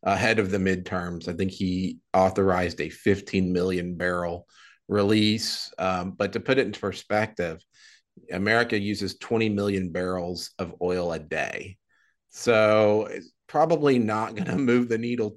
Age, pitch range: 30-49, 95-120 Hz